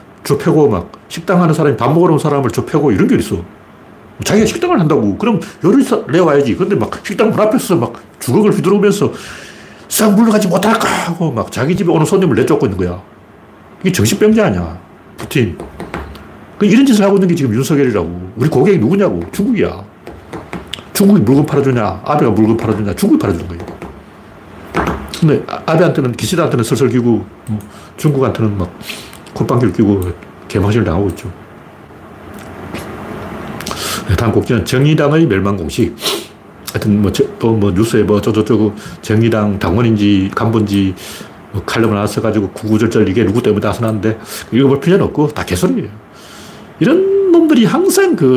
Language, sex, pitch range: Korean, male, 105-165 Hz